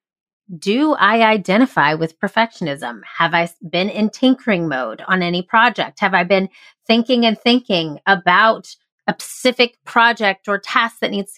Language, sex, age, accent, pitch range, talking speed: English, female, 30-49, American, 180-245 Hz, 155 wpm